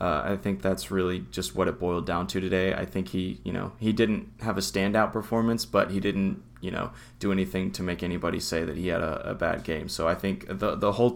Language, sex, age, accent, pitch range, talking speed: English, male, 20-39, American, 95-115 Hz, 255 wpm